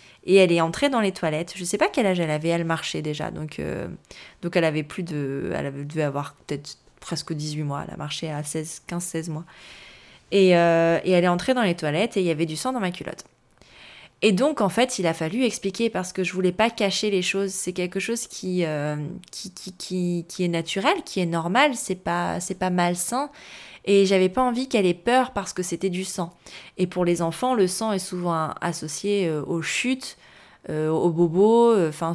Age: 20-39